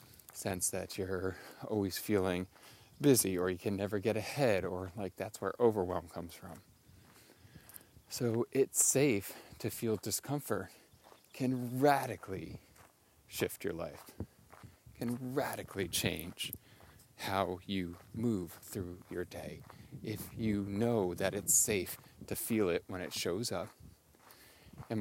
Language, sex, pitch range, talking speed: English, male, 95-115 Hz, 125 wpm